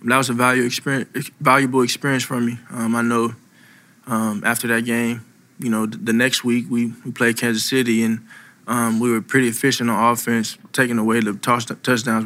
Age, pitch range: 20-39, 120-135 Hz